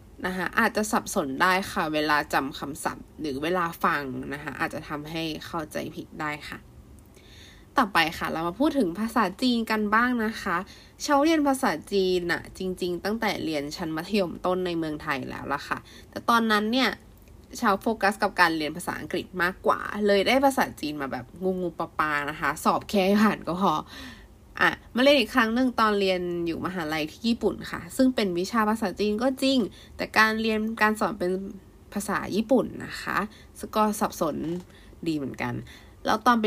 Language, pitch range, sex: Thai, 160-220 Hz, female